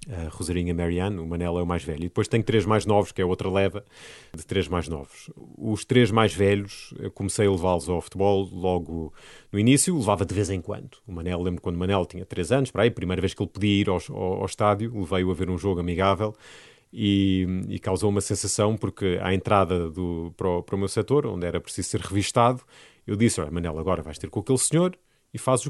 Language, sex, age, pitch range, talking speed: English, male, 30-49, 95-130 Hz, 230 wpm